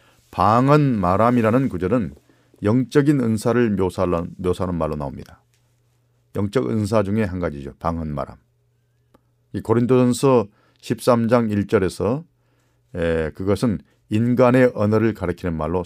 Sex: male